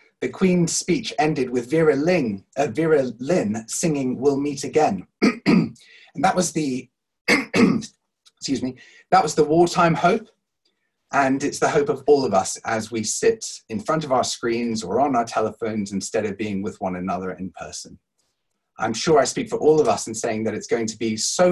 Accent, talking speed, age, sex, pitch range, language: British, 190 wpm, 30-49, male, 110-175 Hz, English